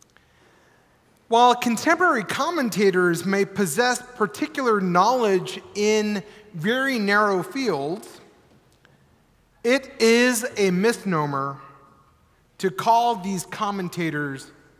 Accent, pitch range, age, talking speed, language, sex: American, 180-245 Hz, 30-49, 75 wpm, English, male